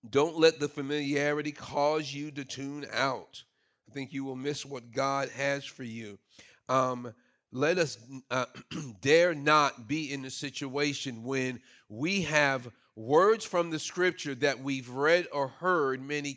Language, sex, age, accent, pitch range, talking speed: English, male, 40-59, American, 140-180 Hz, 155 wpm